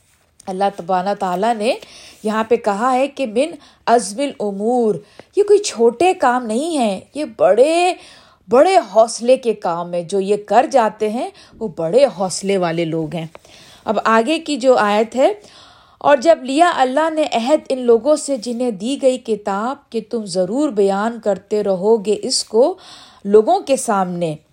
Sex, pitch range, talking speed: female, 205-300 Hz, 165 wpm